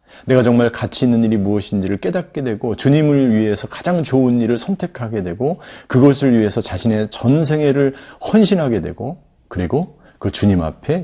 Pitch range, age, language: 95-135 Hz, 40-59, Korean